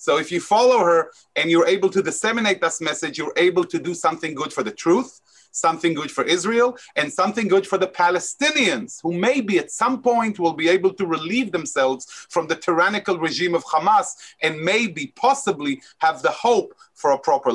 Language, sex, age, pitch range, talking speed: English, male, 30-49, 160-215 Hz, 195 wpm